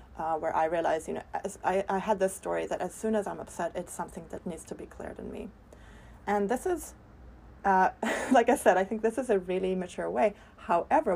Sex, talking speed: female, 225 wpm